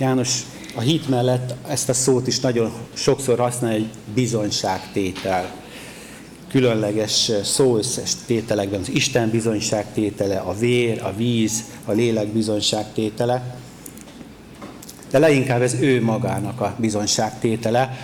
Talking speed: 110 wpm